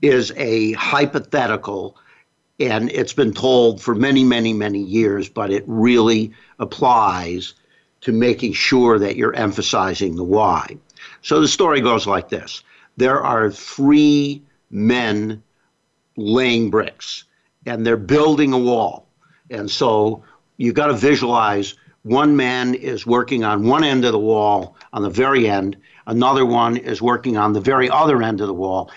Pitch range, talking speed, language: 110-130 Hz, 150 wpm, English